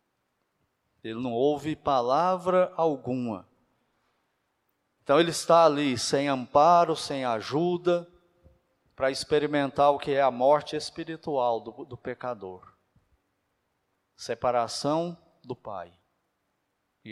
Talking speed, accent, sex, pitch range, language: 100 wpm, Brazilian, male, 125-170 Hz, Portuguese